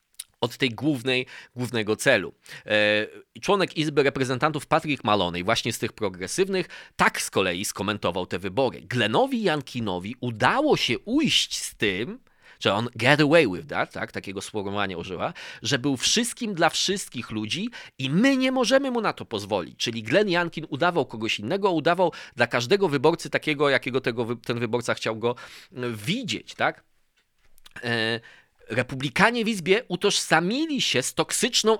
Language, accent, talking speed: Polish, native, 150 wpm